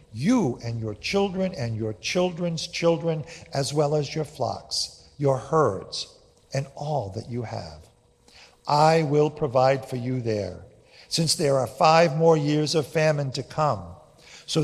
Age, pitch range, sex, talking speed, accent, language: 50-69, 115-155 Hz, male, 150 wpm, American, English